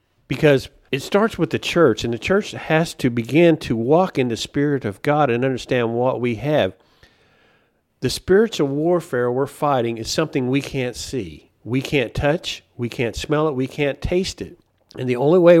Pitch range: 115-150 Hz